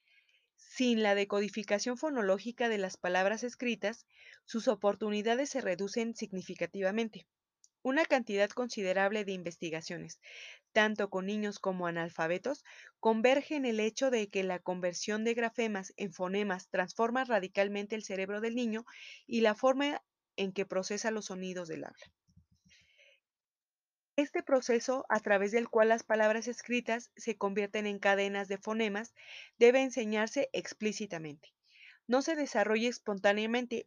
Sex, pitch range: female, 195-240 Hz